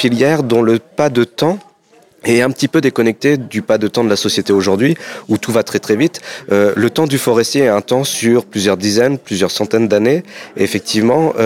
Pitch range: 100-130 Hz